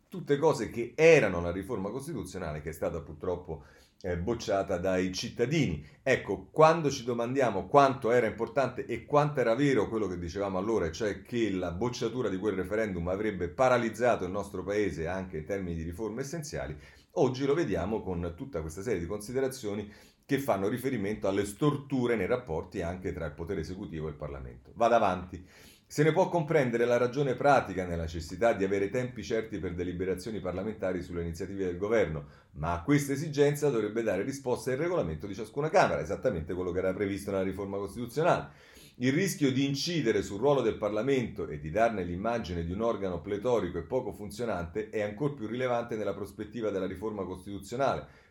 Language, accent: Italian, native